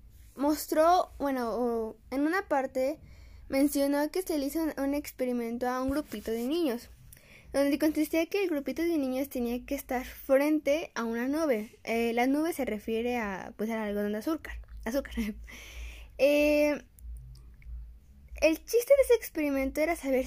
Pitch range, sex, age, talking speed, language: 230-300 Hz, female, 10-29, 150 wpm, Spanish